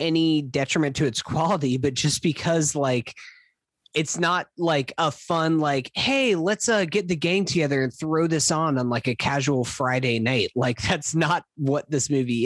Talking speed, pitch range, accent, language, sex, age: 185 wpm, 125-165 Hz, American, English, male, 20-39